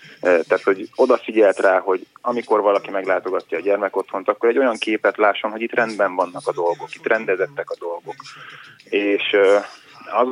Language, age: Hungarian, 20-39